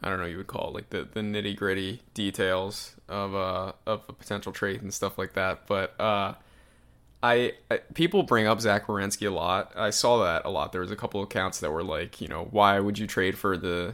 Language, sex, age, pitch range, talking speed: English, male, 20-39, 95-115 Hz, 240 wpm